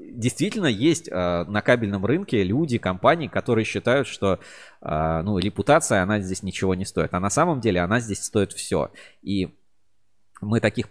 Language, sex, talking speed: Russian, male, 165 wpm